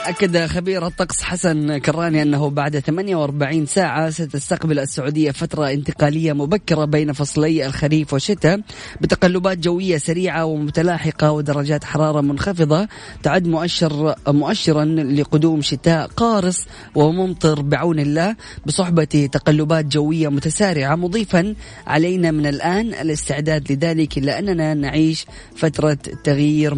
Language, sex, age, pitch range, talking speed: Arabic, female, 20-39, 145-170 Hz, 110 wpm